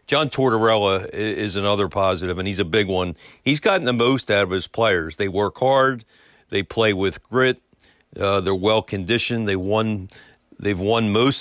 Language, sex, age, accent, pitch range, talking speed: English, male, 50-69, American, 95-120 Hz, 180 wpm